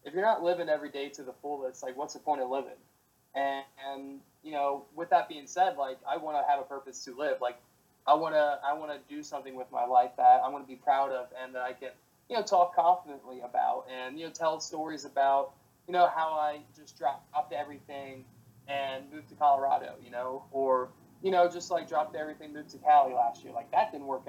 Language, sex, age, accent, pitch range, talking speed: English, male, 20-39, American, 130-160 Hz, 235 wpm